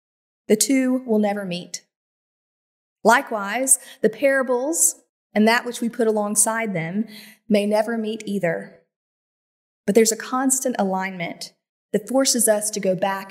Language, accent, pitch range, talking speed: English, American, 190-230 Hz, 135 wpm